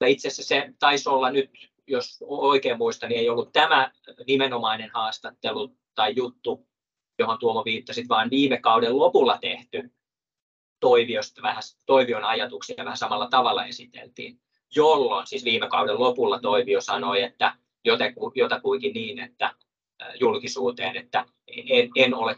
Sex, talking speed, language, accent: male, 135 wpm, Finnish, native